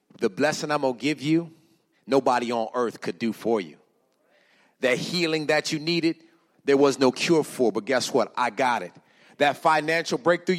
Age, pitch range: 40-59, 130-170 Hz